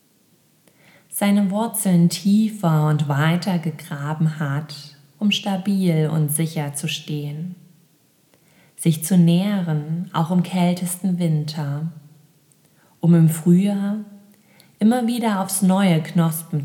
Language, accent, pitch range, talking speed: German, German, 150-180 Hz, 100 wpm